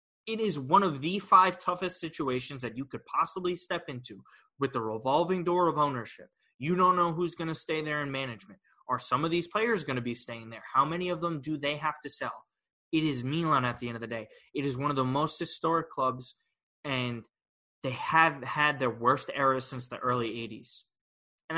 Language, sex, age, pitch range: English, male, 20-39, 125-160 Hz